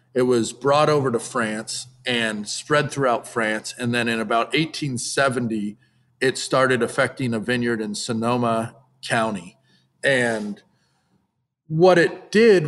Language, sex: English, male